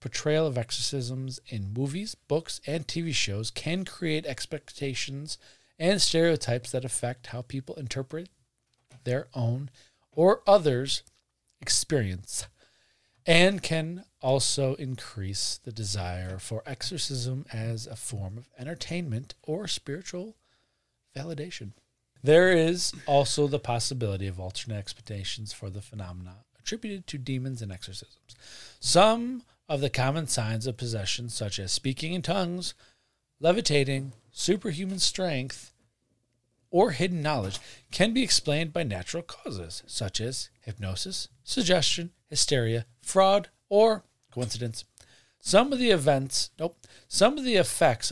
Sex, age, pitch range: male, 40-59, 115-165 Hz